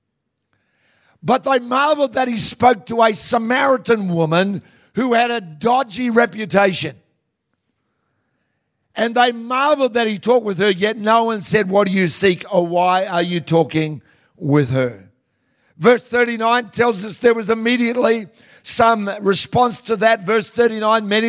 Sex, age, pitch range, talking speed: male, 60-79, 195-240 Hz, 145 wpm